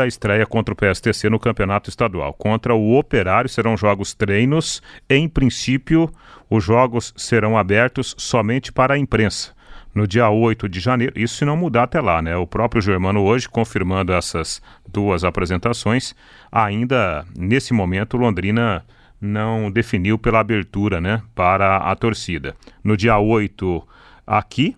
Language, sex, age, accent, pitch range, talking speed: Portuguese, male, 40-59, Brazilian, 100-120 Hz, 145 wpm